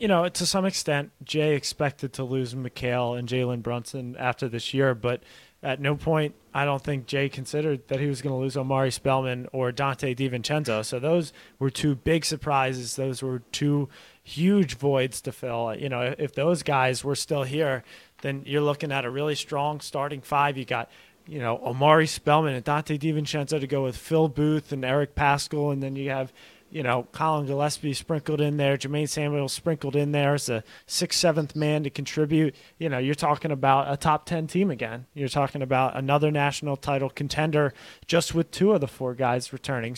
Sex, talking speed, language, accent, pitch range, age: male, 195 wpm, English, American, 130-155 Hz, 30-49